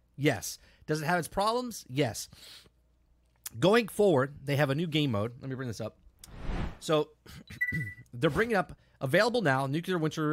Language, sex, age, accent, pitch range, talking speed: English, male, 30-49, American, 105-155 Hz, 165 wpm